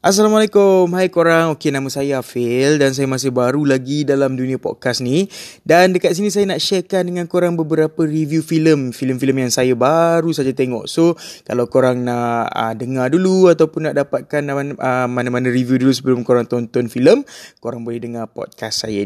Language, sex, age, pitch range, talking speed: Malay, male, 20-39, 125-160 Hz, 175 wpm